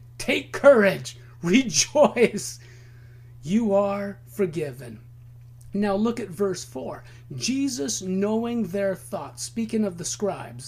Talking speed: 105 wpm